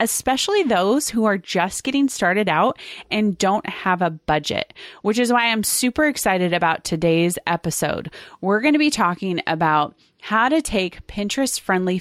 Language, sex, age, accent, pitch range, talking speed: English, female, 30-49, American, 170-220 Hz, 155 wpm